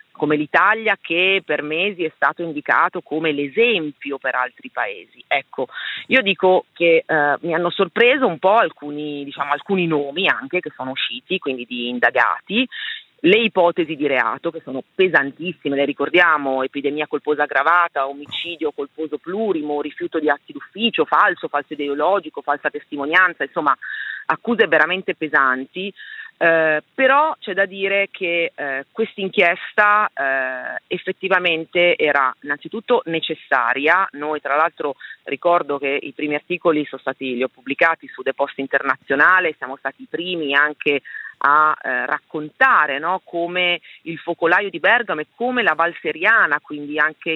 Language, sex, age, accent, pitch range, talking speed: Italian, female, 40-59, native, 145-185 Hz, 145 wpm